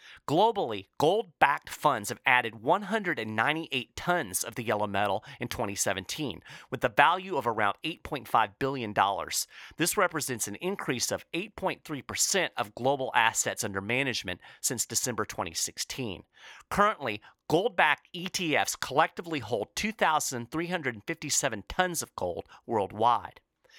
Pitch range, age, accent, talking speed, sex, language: 115-180 Hz, 40-59, American, 110 wpm, male, English